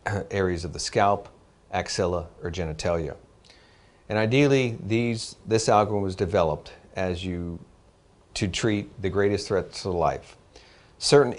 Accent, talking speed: American, 125 wpm